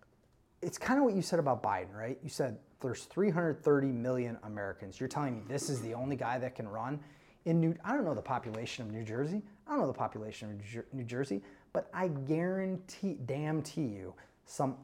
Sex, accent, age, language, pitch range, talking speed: male, American, 30-49, English, 120-155 Hz, 205 wpm